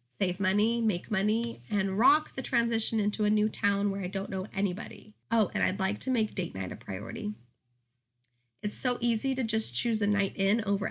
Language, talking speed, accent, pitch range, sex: English, 205 wpm, American, 145-220 Hz, female